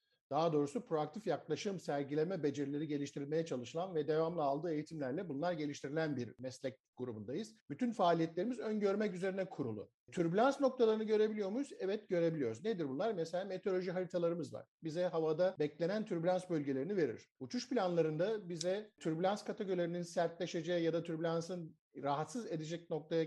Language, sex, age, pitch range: Turkish, male, 50-69, 155-180 Hz